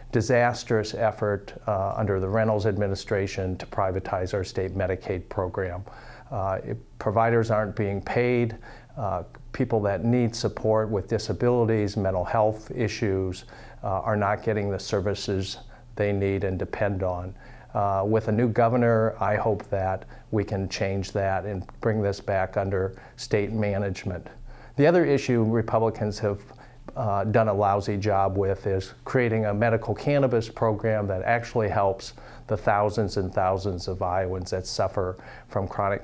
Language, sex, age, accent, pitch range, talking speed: English, male, 50-69, American, 95-115 Hz, 145 wpm